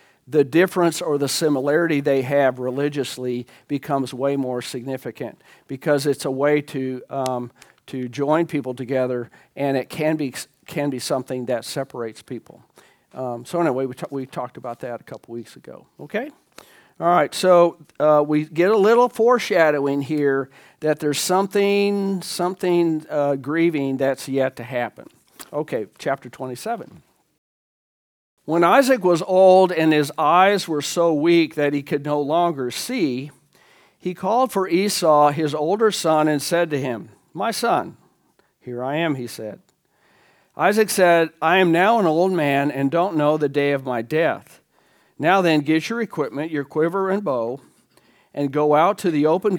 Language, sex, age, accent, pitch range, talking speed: English, male, 50-69, American, 135-170 Hz, 160 wpm